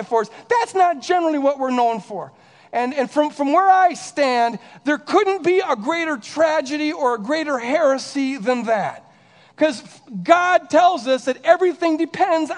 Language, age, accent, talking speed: English, 50-69, American, 160 wpm